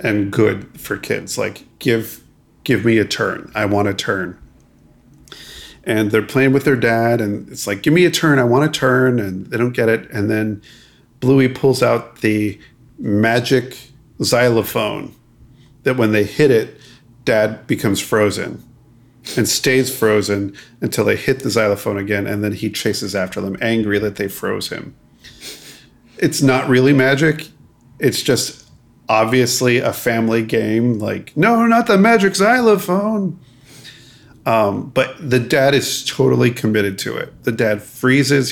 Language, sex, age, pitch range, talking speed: English, male, 40-59, 110-135 Hz, 155 wpm